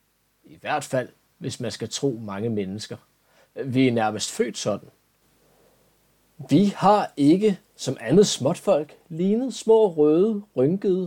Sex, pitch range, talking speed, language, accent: male, 115-180 Hz, 130 wpm, Danish, native